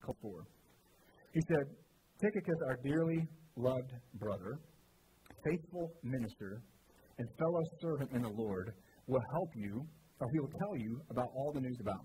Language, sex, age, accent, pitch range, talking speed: English, male, 40-59, American, 110-145 Hz, 145 wpm